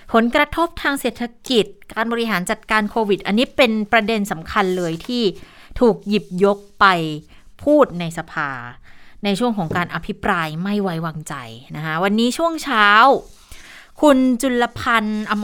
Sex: female